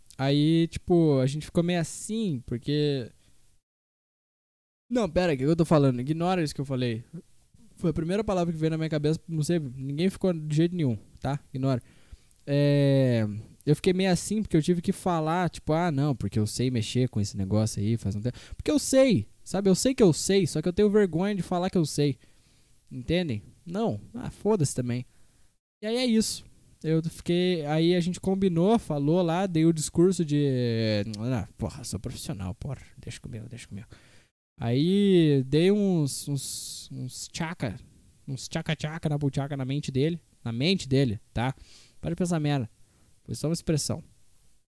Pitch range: 120-170 Hz